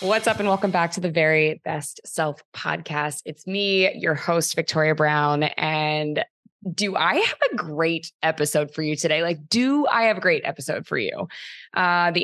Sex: female